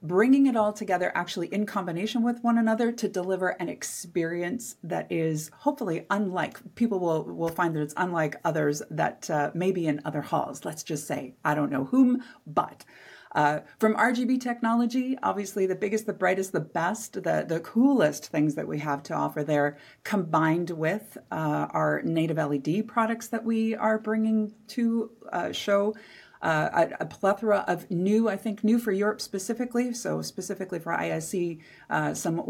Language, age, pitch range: English, 30-49, 160-215 Hz